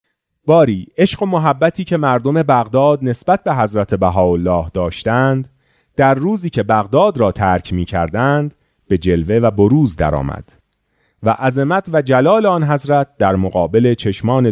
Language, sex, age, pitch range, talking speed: Persian, male, 30-49, 95-150 Hz, 140 wpm